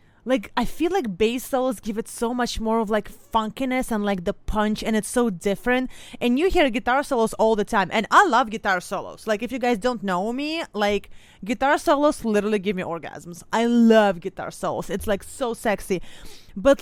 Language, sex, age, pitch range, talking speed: English, female, 20-39, 195-250 Hz, 205 wpm